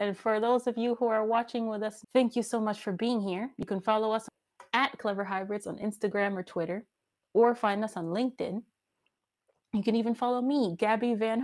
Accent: American